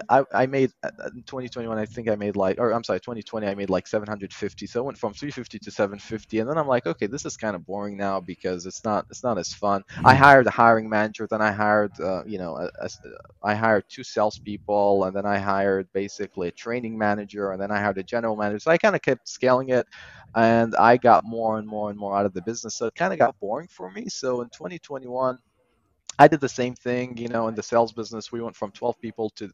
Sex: male